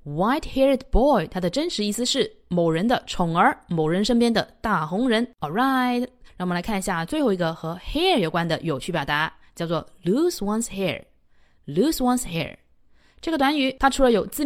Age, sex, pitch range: 20-39, female, 180-255 Hz